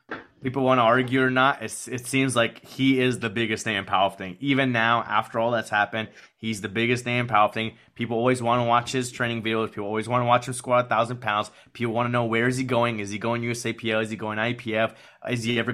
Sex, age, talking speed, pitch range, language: male, 20-39, 250 wpm, 110-125 Hz, English